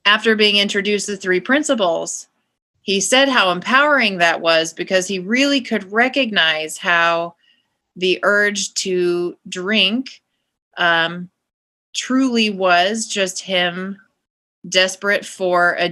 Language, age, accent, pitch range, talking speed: English, 30-49, American, 180-225 Hz, 115 wpm